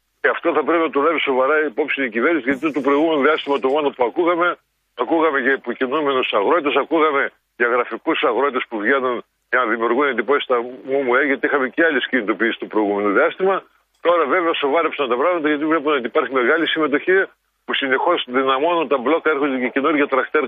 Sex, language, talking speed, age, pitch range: male, Greek, 195 wpm, 50-69, 130-165 Hz